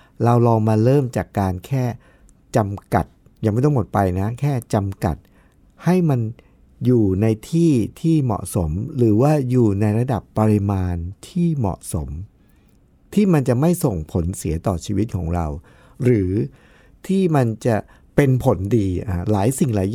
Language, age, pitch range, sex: Thai, 60-79, 100-140 Hz, male